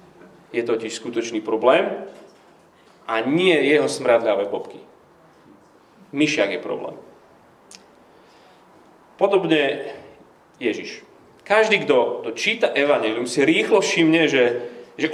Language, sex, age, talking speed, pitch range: Slovak, male, 30-49, 100 wpm, 125-185 Hz